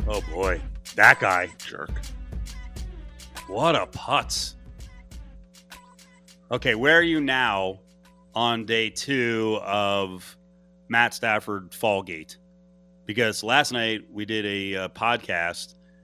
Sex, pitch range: male, 100-140 Hz